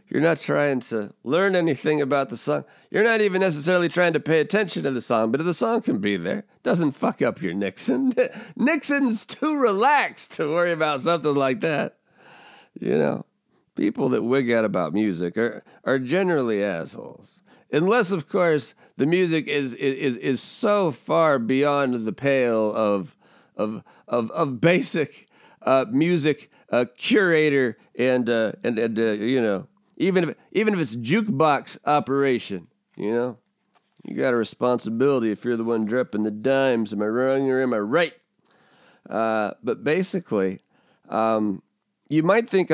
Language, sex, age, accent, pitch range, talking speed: English, male, 40-59, American, 115-170 Hz, 165 wpm